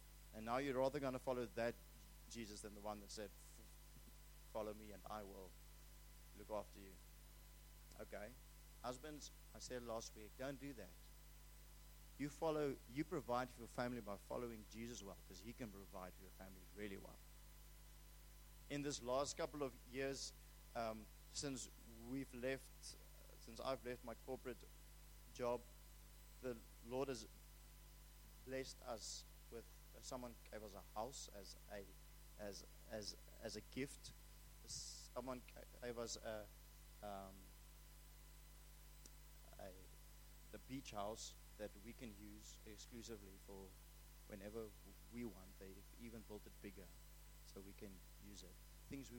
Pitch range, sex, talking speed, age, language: 105-130 Hz, male, 140 wpm, 30-49, English